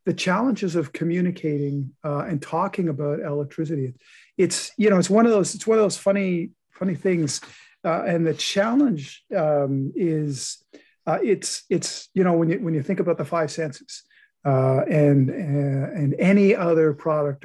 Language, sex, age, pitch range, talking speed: English, male, 50-69, 145-190 Hz, 170 wpm